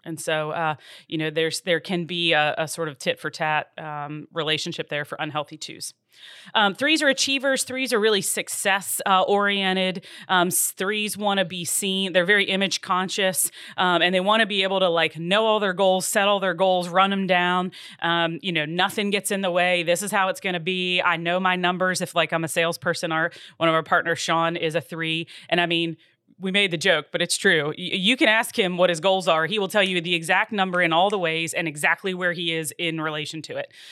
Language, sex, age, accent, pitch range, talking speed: English, female, 30-49, American, 165-190 Hz, 235 wpm